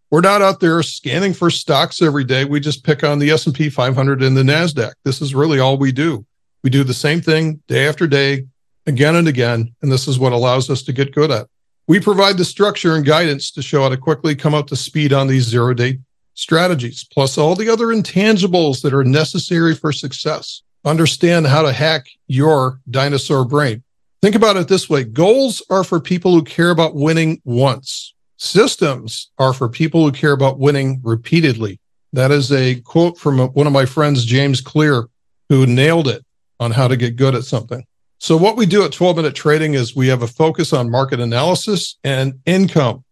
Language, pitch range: English, 130-160 Hz